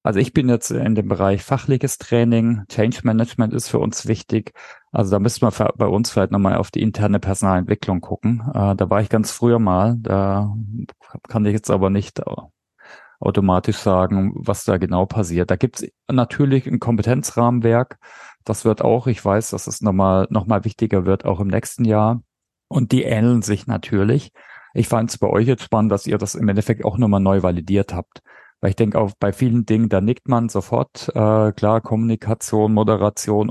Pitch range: 100-120 Hz